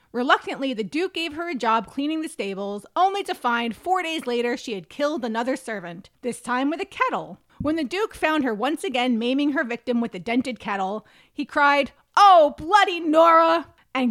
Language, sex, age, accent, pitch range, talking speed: English, female, 30-49, American, 240-315 Hz, 195 wpm